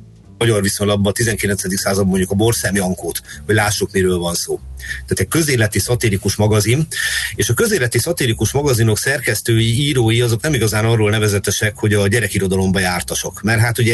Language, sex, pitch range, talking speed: Hungarian, male, 105-120 Hz, 165 wpm